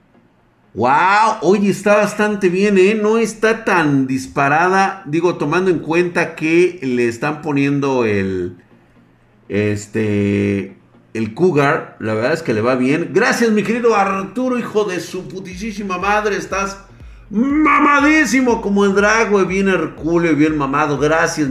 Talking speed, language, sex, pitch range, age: 135 wpm, Spanish, male, 115-170 Hz, 50-69